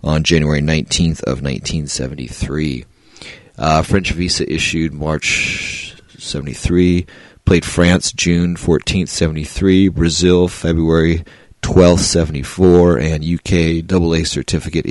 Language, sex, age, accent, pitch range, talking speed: English, male, 30-49, American, 80-95 Hz, 95 wpm